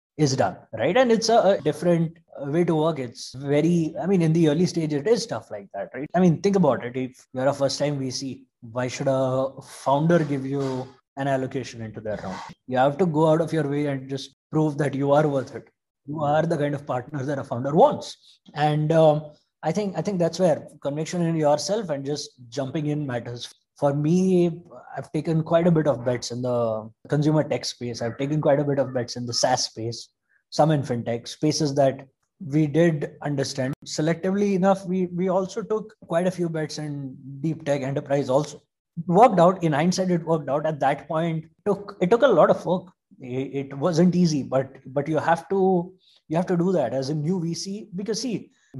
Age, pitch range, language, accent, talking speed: 20-39, 135-170 Hz, English, Indian, 215 wpm